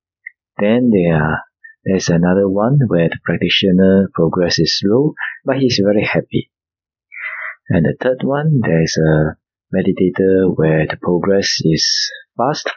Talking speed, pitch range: 120 wpm, 90-140 Hz